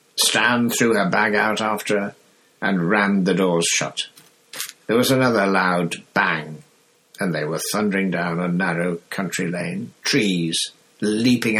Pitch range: 90-120 Hz